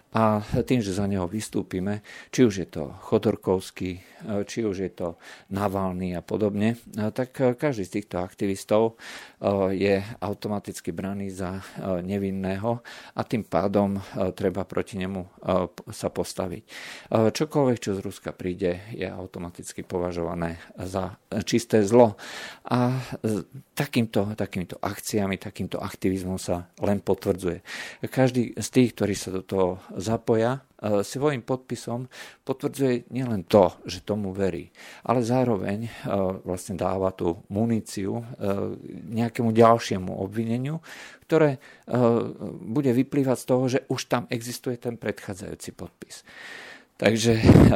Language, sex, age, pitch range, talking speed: Slovak, male, 50-69, 95-115 Hz, 120 wpm